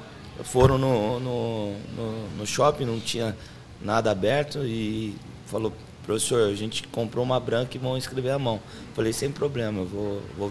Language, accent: Portuguese, Brazilian